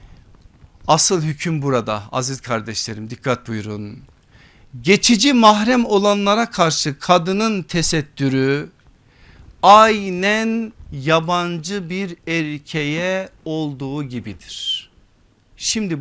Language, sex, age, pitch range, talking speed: Turkish, male, 50-69, 145-230 Hz, 75 wpm